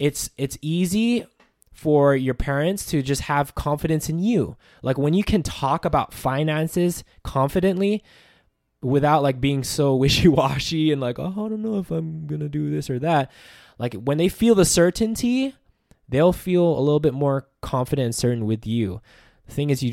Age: 20-39